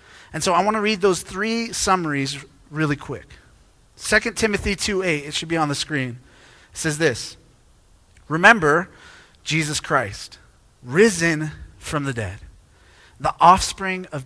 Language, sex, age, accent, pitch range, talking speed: English, male, 30-49, American, 125-205 Hz, 145 wpm